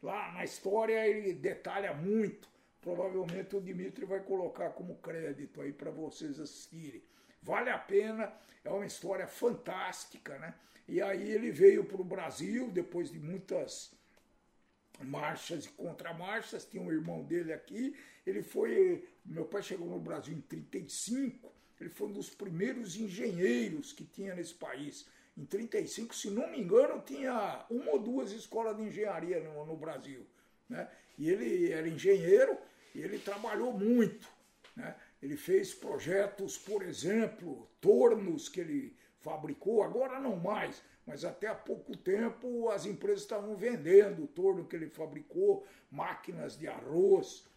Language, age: Portuguese, 60-79